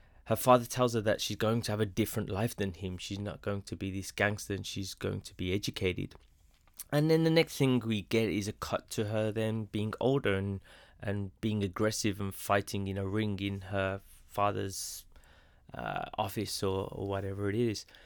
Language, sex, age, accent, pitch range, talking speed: English, male, 20-39, British, 95-110 Hz, 205 wpm